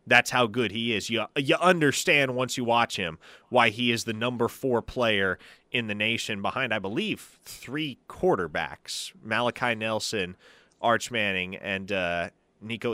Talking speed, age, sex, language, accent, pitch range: 160 wpm, 30-49, male, English, American, 115-150 Hz